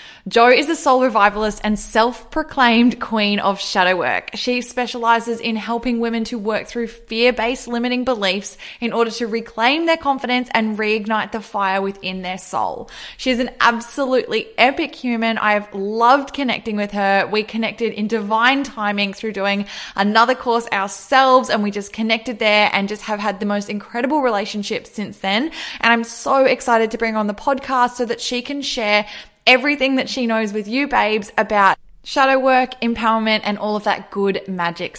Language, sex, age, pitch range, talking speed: English, female, 20-39, 205-245 Hz, 180 wpm